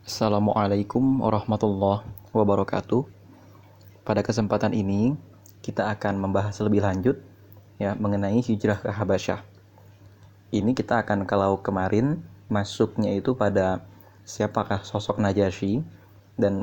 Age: 20-39